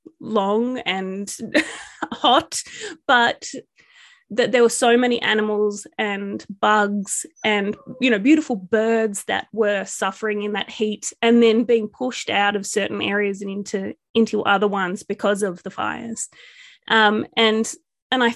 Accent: Australian